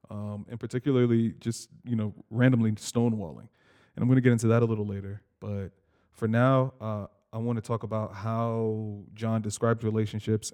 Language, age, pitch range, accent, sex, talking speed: English, 20-39, 105-120 Hz, American, male, 175 wpm